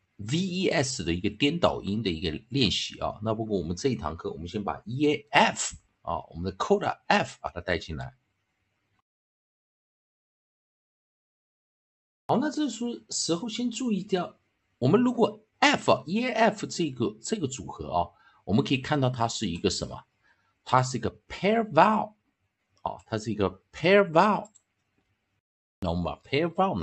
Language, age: Chinese, 50-69